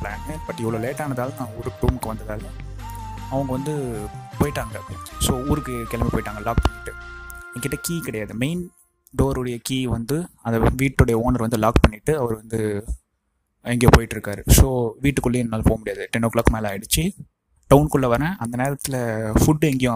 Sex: male